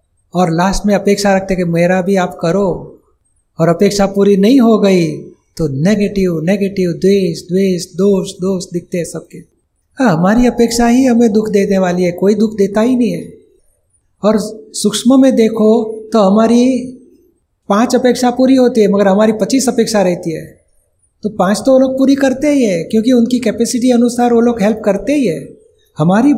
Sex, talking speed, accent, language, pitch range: male, 180 wpm, native, Gujarati, 185-235 Hz